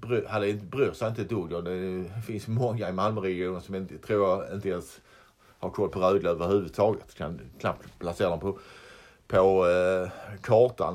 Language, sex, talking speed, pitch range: Swedish, male, 155 wpm, 90-105 Hz